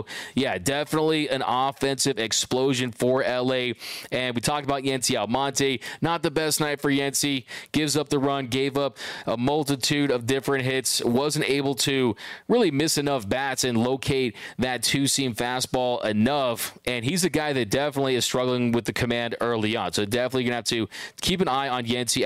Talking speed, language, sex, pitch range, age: 180 wpm, English, male, 125-140 Hz, 20-39